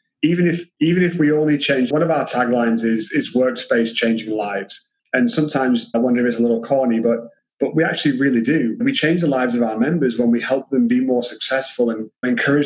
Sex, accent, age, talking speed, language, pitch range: male, British, 30-49, 225 wpm, English, 120-145 Hz